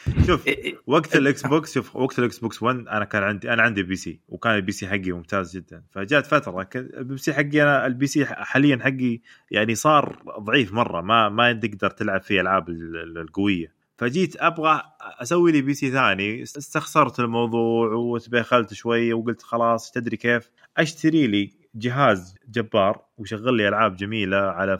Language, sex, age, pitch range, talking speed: Arabic, male, 20-39, 100-135 Hz, 160 wpm